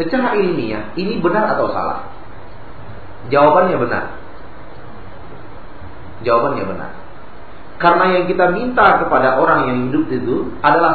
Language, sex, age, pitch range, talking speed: Malay, male, 40-59, 95-145 Hz, 110 wpm